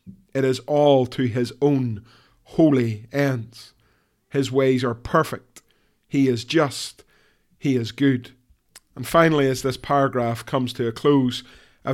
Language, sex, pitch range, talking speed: English, male, 120-140 Hz, 140 wpm